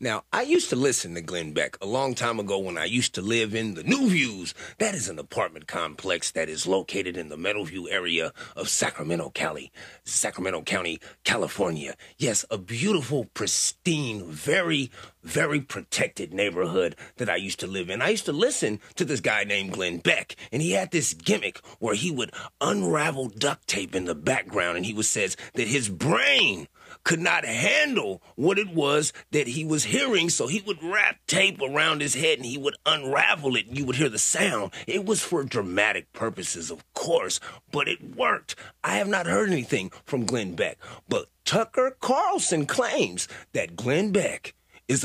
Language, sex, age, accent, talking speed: English, male, 30-49, American, 185 wpm